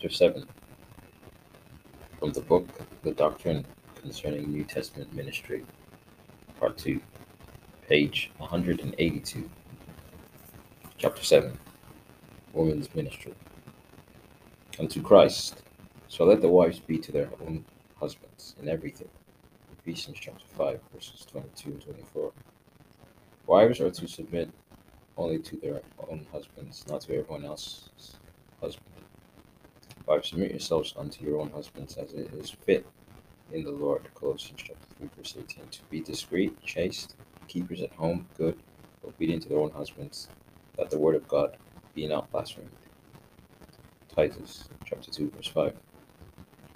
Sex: male